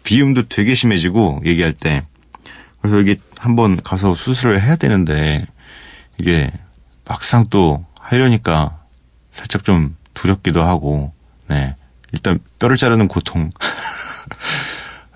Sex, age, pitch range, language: male, 30-49, 75-105 Hz, Korean